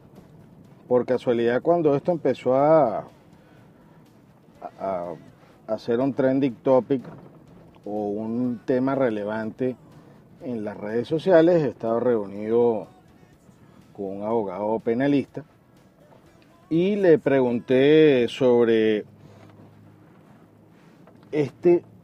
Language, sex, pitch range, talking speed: Spanish, male, 115-155 Hz, 85 wpm